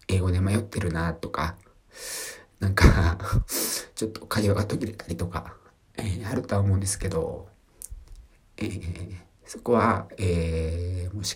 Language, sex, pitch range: Japanese, male, 85-110 Hz